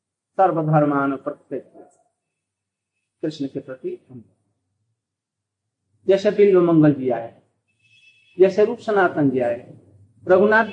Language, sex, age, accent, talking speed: Hindi, male, 50-69, native, 90 wpm